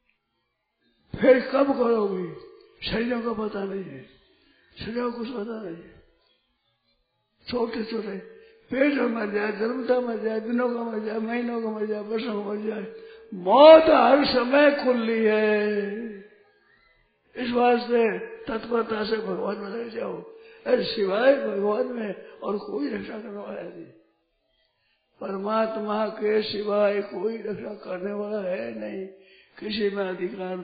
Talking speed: 125 wpm